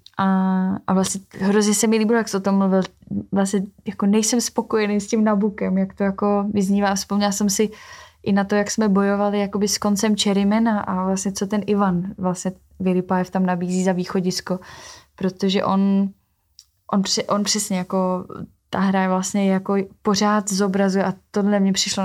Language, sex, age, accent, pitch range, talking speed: Czech, female, 20-39, native, 190-205 Hz, 175 wpm